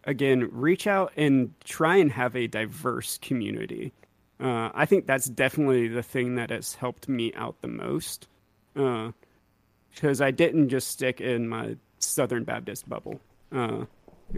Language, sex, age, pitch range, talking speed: English, male, 30-49, 115-135 Hz, 150 wpm